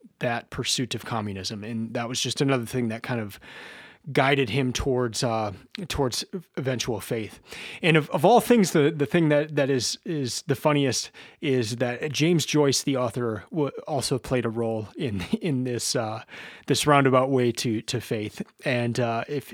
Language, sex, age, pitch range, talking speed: English, male, 30-49, 115-150 Hz, 180 wpm